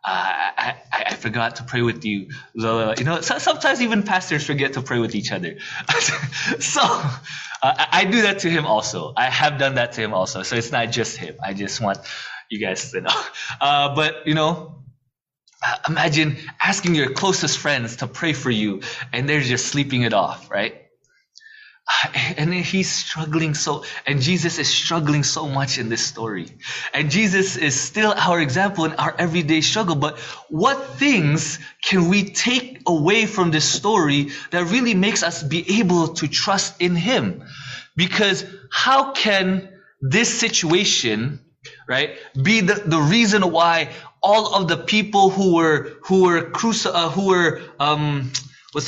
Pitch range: 140-190 Hz